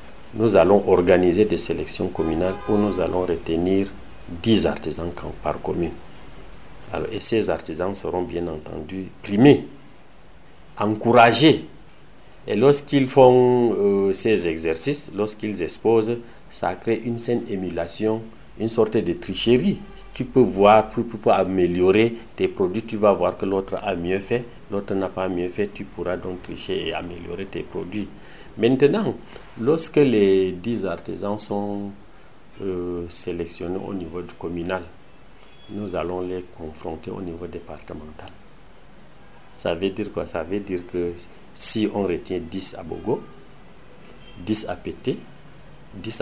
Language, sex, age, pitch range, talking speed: French, male, 50-69, 85-110 Hz, 140 wpm